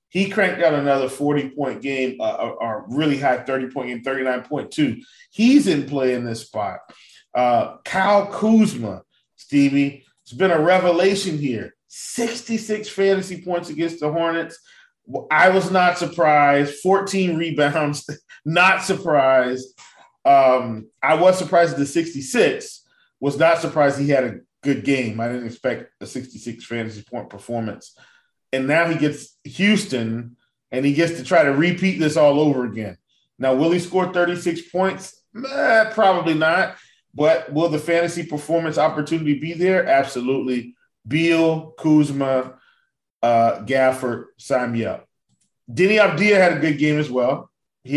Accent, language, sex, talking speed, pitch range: American, English, male, 145 wpm, 130-180 Hz